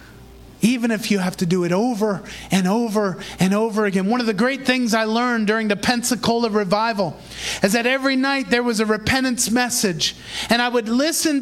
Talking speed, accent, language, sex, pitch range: 195 wpm, American, English, male, 195-275 Hz